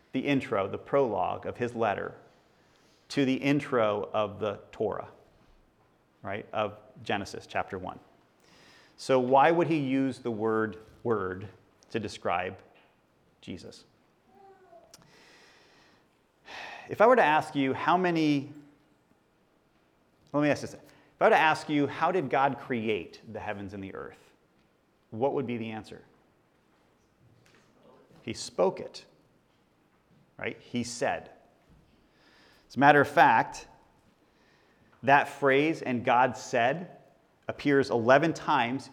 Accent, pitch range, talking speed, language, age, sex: American, 120-150 Hz, 125 wpm, English, 30-49, male